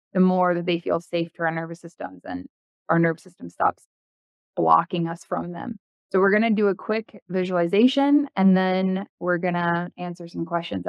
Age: 20-39